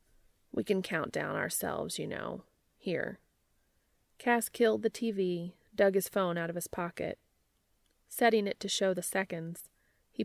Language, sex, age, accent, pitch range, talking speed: English, female, 30-49, American, 170-200 Hz, 150 wpm